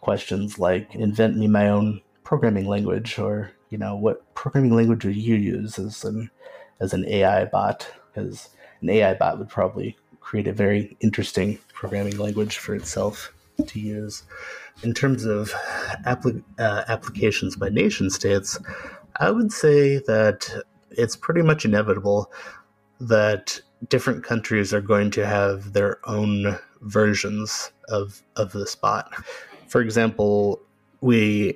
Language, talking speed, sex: English, 135 wpm, male